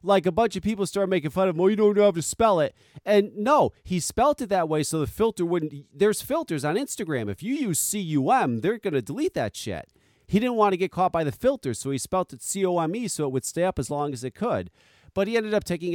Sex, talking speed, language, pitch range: male, 275 wpm, English, 125-195 Hz